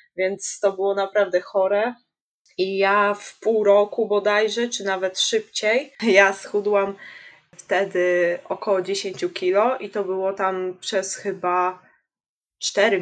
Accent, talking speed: native, 125 wpm